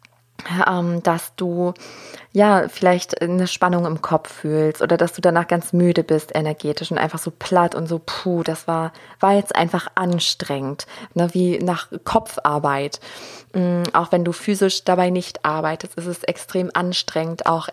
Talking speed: 155 wpm